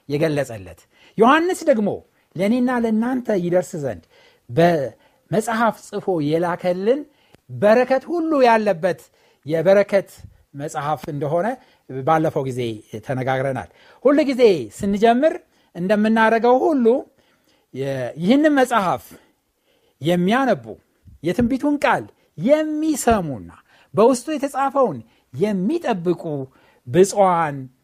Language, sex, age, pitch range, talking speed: Amharic, male, 60-79, 160-245 Hz, 75 wpm